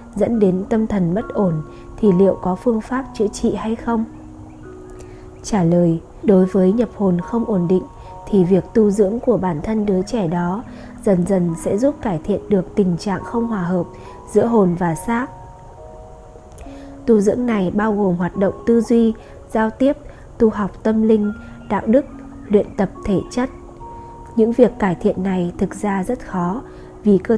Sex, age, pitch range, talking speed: female, 20-39, 180-225 Hz, 180 wpm